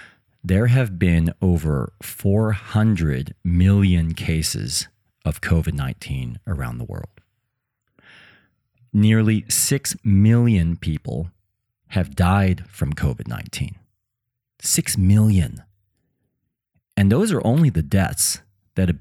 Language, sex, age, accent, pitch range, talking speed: English, male, 40-59, American, 85-115 Hz, 95 wpm